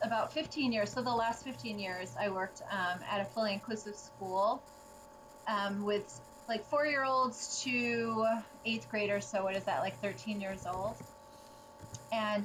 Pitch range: 200-290 Hz